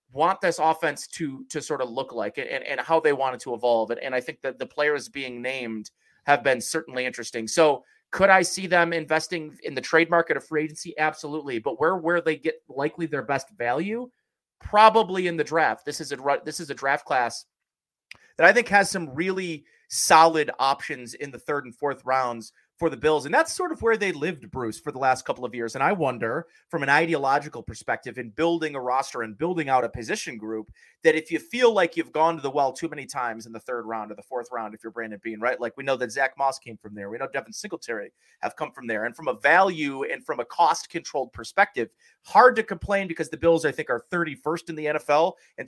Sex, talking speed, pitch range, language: male, 235 wpm, 125-165 Hz, English